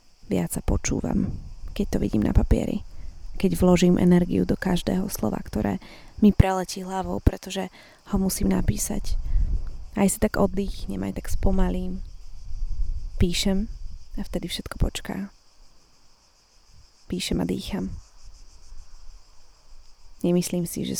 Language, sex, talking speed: Slovak, female, 115 wpm